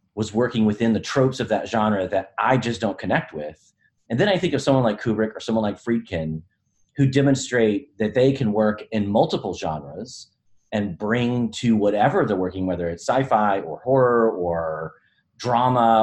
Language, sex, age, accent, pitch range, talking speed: English, male, 30-49, American, 95-125 Hz, 180 wpm